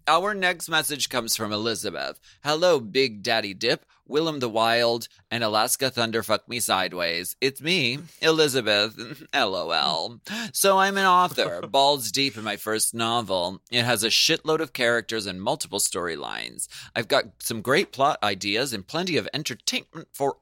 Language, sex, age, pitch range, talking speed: English, male, 30-49, 105-145 Hz, 155 wpm